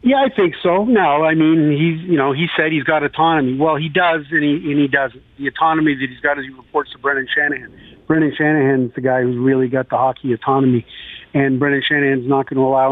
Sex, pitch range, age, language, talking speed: male, 135-150 Hz, 40-59, English, 235 wpm